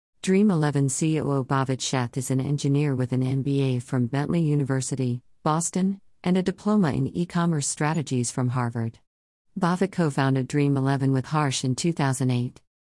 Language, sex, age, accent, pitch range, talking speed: English, female, 50-69, American, 130-155 Hz, 135 wpm